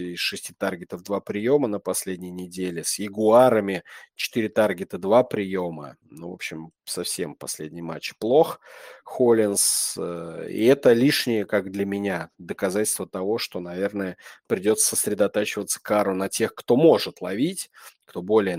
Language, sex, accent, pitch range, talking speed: Russian, male, native, 90-115 Hz, 135 wpm